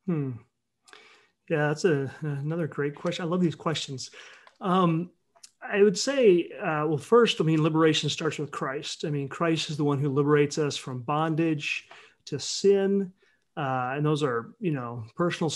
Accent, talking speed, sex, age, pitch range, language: American, 170 wpm, male, 30-49, 145-175 Hz, English